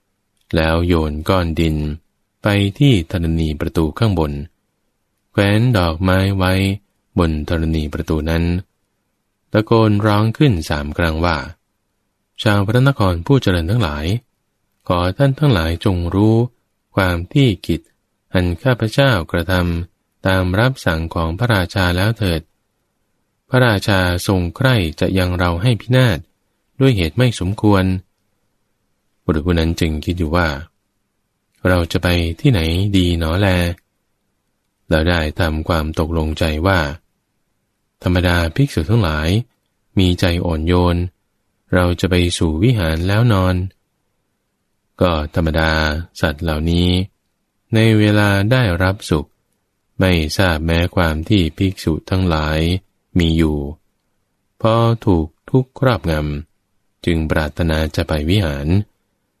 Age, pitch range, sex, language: 20-39, 85-105 Hz, male, English